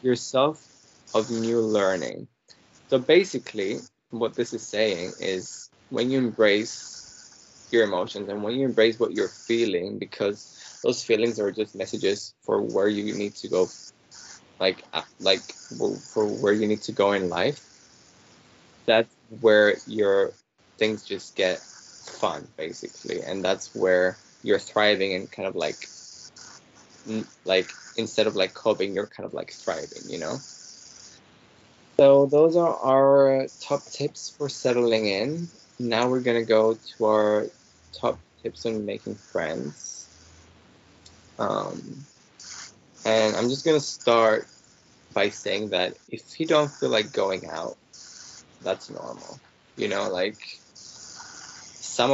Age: 20-39